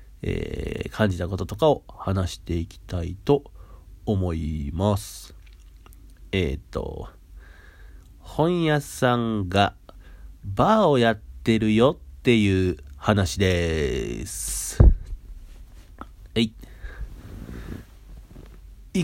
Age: 40-59